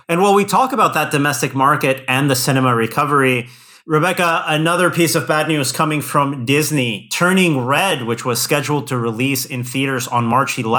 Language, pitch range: English, 130-160 Hz